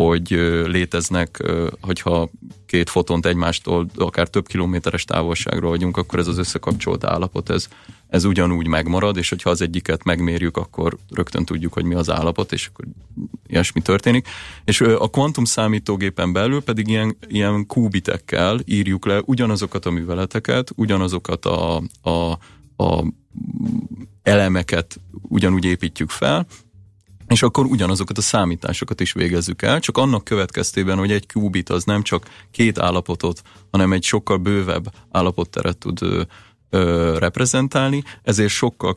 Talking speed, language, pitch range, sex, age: 130 wpm, Hungarian, 85-105 Hz, male, 30-49